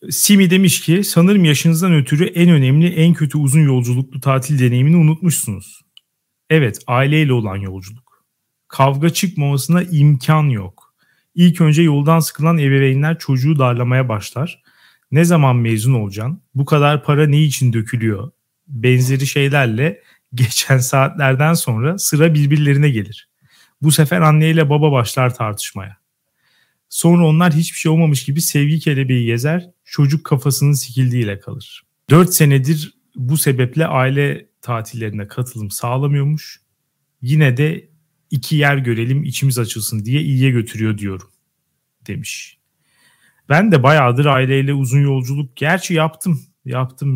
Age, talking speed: 40-59, 125 wpm